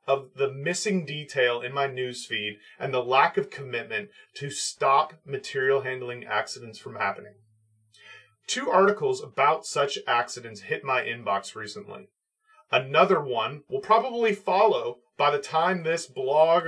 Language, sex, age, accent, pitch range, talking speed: English, male, 30-49, American, 145-220 Hz, 135 wpm